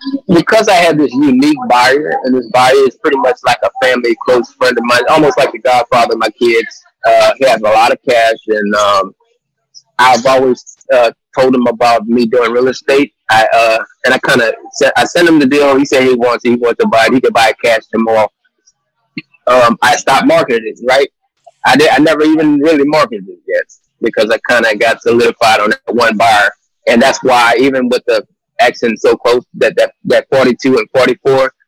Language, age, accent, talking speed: English, 20-39, American, 205 wpm